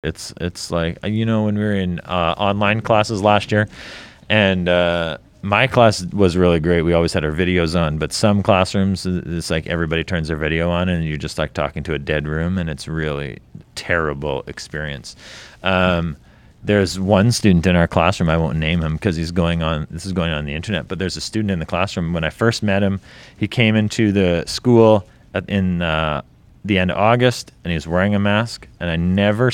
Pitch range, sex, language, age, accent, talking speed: 80-100 Hz, male, English, 30-49, American, 210 wpm